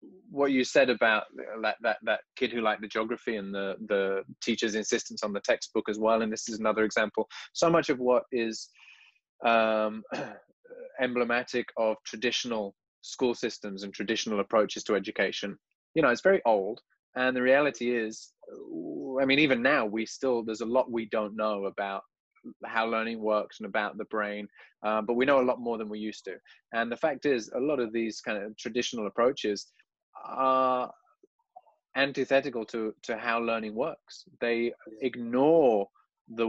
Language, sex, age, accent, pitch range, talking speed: English, male, 20-39, British, 105-125 Hz, 175 wpm